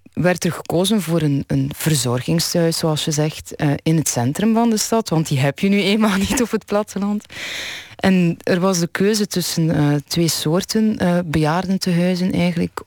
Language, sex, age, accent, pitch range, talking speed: Dutch, female, 20-39, Dutch, 145-185 Hz, 180 wpm